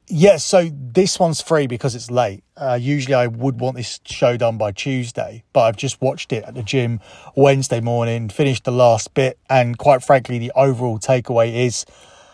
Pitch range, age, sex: 120-145 Hz, 30-49, male